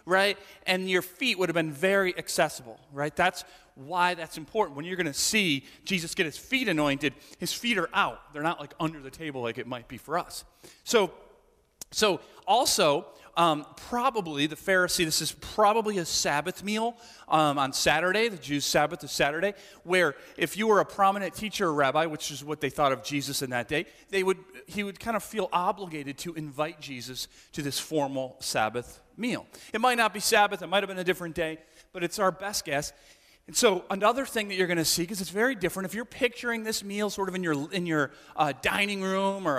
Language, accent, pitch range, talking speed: English, American, 155-200 Hz, 215 wpm